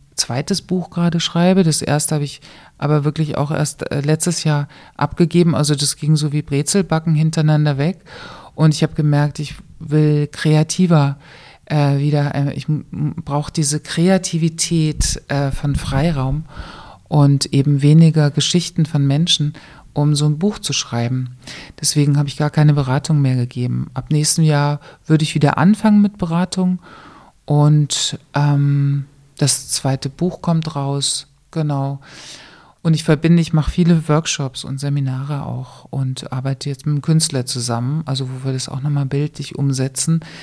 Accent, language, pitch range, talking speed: German, German, 140-160 Hz, 150 wpm